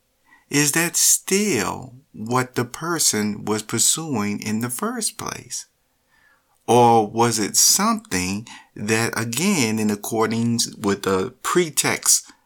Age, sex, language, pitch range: 50-69, male, English, 100-130 Hz